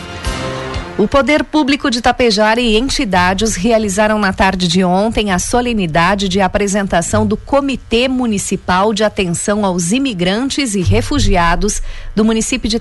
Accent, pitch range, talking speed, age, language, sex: Brazilian, 180-230 Hz, 130 wpm, 40-59, Portuguese, female